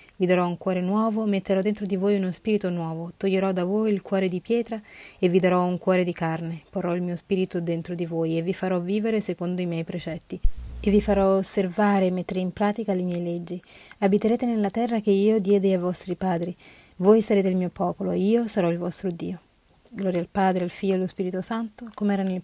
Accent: native